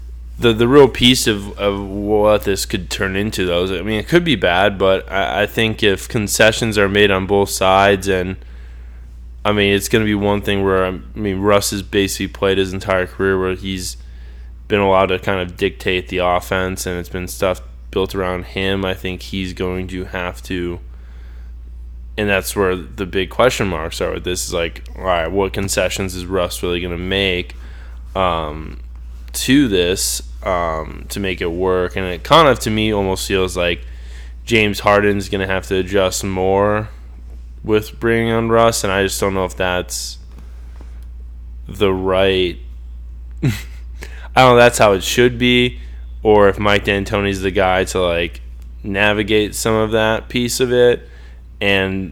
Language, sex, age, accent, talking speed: English, male, 20-39, American, 180 wpm